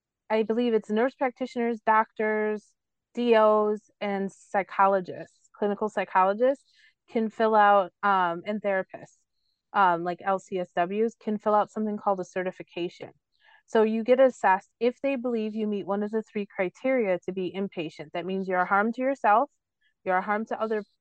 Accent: American